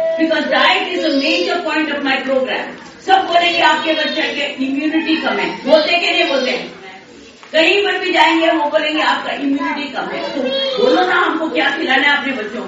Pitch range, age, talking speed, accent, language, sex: 275-330 Hz, 40-59, 185 wpm, native, Hindi, female